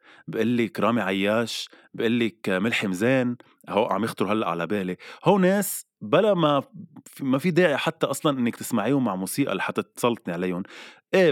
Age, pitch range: 20-39, 100-135 Hz